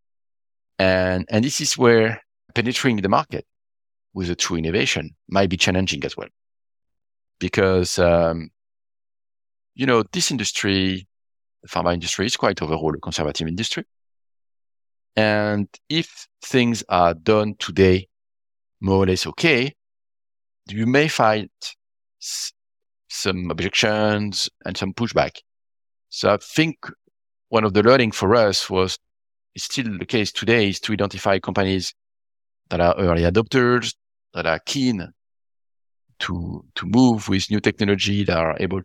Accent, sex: French, male